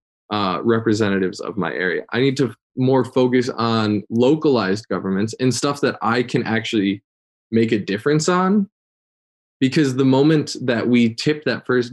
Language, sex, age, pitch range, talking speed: English, male, 20-39, 105-125 Hz, 155 wpm